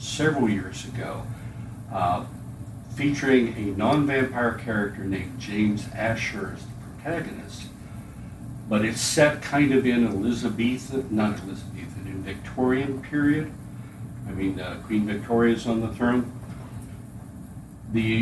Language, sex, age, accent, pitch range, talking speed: English, male, 60-79, American, 105-125 Hz, 115 wpm